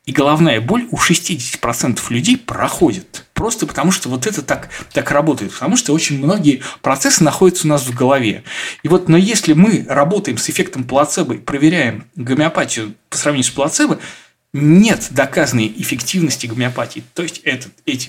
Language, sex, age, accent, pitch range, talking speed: Russian, male, 20-39, native, 125-175 Hz, 160 wpm